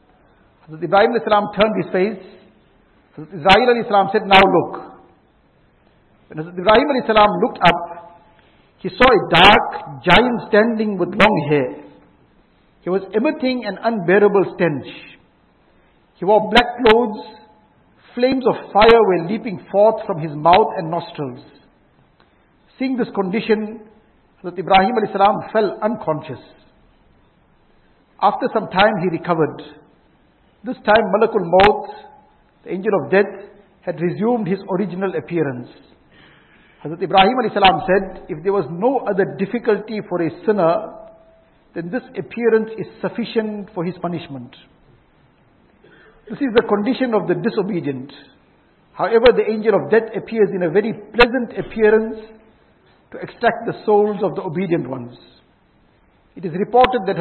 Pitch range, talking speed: 180-220 Hz, 125 wpm